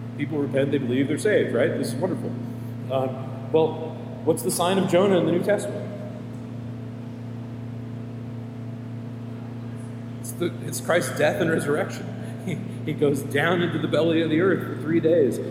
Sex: male